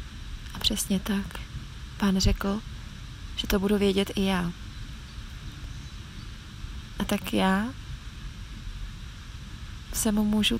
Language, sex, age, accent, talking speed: Czech, female, 30-49, native, 90 wpm